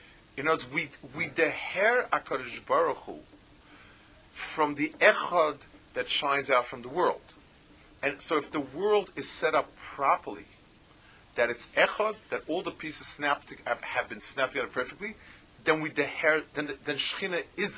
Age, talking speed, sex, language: 40-59, 155 wpm, male, English